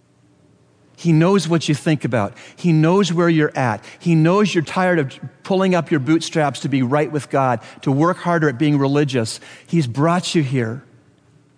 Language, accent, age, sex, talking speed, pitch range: English, American, 40-59, male, 180 wpm, 115-150 Hz